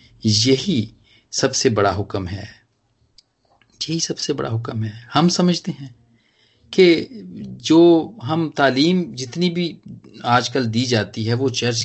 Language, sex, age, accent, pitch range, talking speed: Hindi, male, 40-59, native, 110-140 Hz, 125 wpm